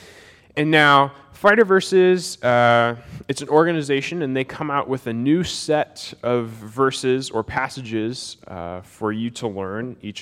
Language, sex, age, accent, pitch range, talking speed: English, male, 20-39, American, 105-150 Hz, 155 wpm